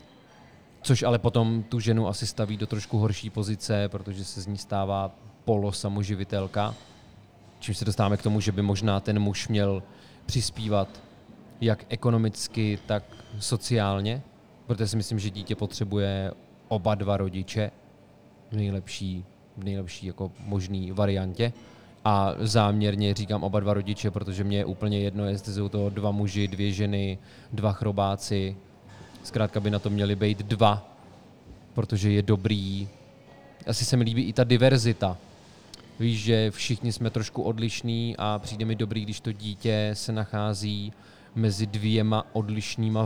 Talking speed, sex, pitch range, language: 145 wpm, male, 100-110 Hz, Czech